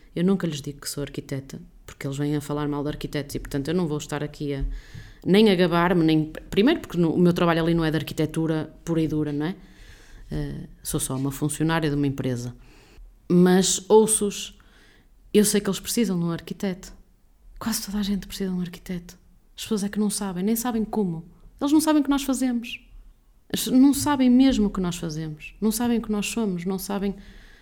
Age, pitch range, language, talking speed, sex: 20-39, 160-225 Hz, Portuguese, 215 wpm, female